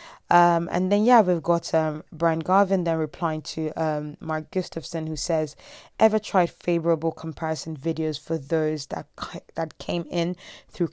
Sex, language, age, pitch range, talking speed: female, English, 20-39, 160-180 Hz, 160 wpm